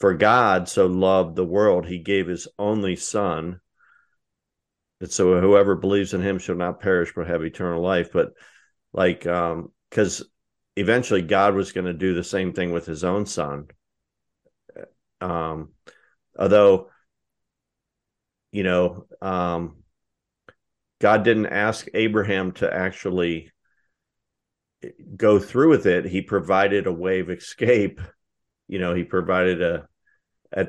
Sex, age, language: male, 50-69, English